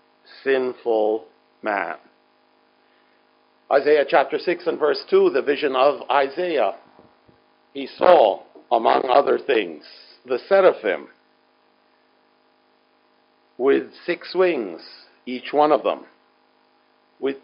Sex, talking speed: male, 95 wpm